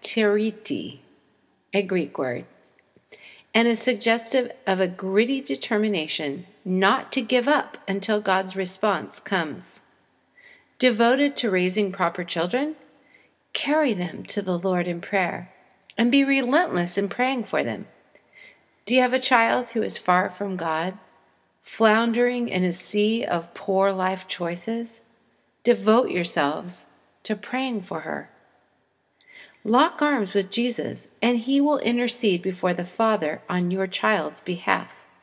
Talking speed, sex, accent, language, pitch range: 130 wpm, female, American, English, 185-250 Hz